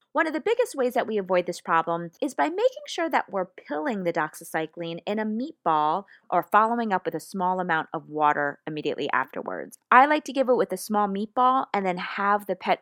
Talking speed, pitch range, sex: 220 wpm, 165-225 Hz, female